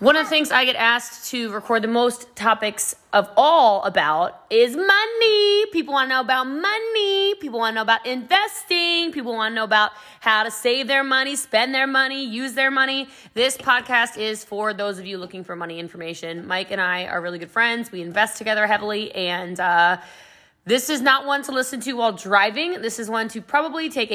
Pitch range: 210-295 Hz